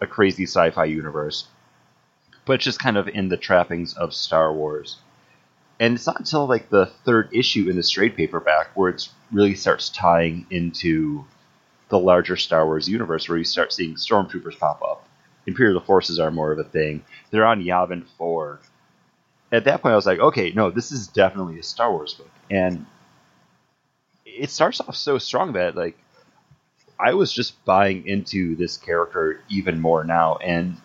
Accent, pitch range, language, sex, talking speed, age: American, 85-110 Hz, English, male, 175 wpm, 30-49